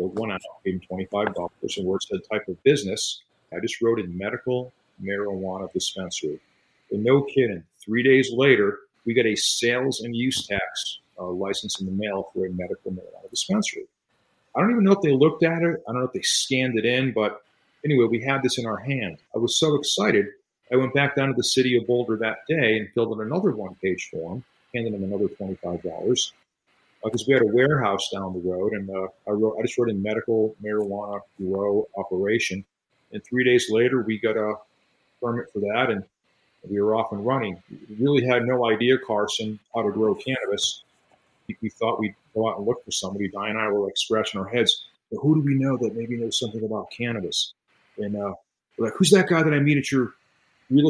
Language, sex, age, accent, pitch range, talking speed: English, male, 50-69, American, 105-130 Hz, 210 wpm